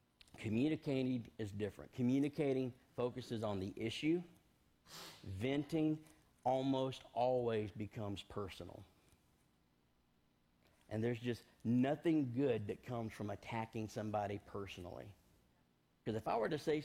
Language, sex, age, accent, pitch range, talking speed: English, male, 50-69, American, 105-135 Hz, 105 wpm